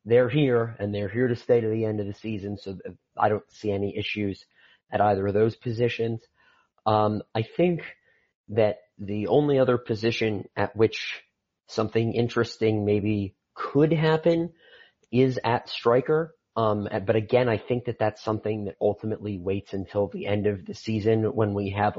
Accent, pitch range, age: American, 100-115 Hz, 30-49